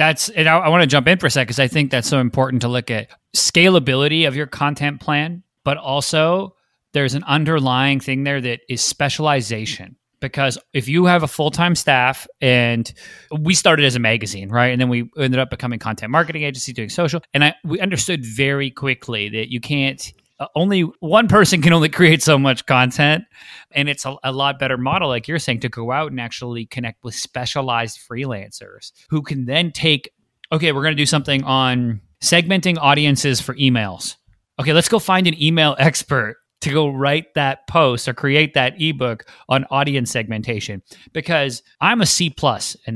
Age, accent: 30-49, American